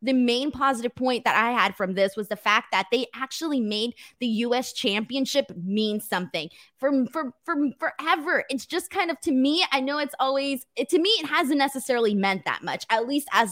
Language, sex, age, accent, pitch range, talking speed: English, female, 20-39, American, 225-295 Hz, 210 wpm